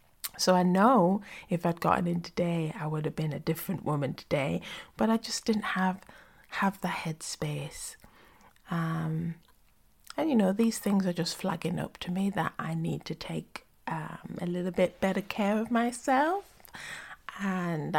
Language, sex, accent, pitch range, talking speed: English, female, British, 160-200 Hz, 165 wpm